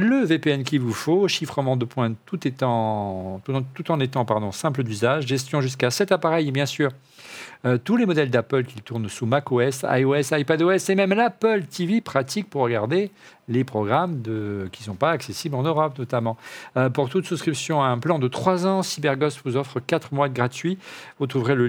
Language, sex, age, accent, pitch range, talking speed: French, male, 50-69, French, 115-165 Hz, 195 wpm